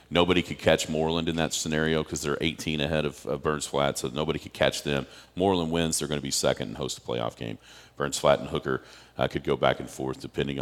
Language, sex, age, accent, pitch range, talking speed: English, male, 40-59, American, 70-85 Hz, 245 wpm